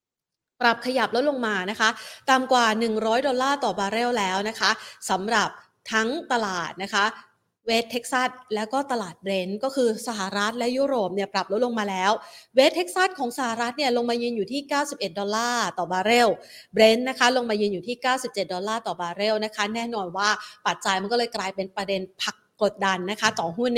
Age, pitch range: 30-49, 200-255 Hz